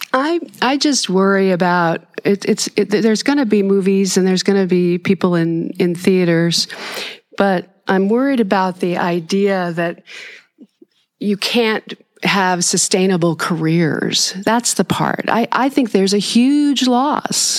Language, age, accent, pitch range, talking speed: English, 40-59, American, 150-195 Hz, 150 wpm